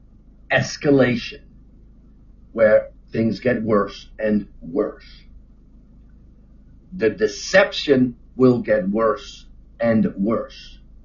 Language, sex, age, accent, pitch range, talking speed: English, male, 50-69, American, 110-185 Hz, 75 wpm